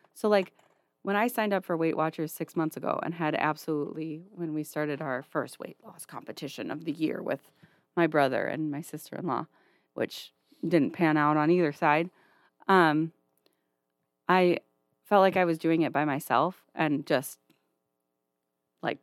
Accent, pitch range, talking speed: American, 145-180 Hz, 165 wpm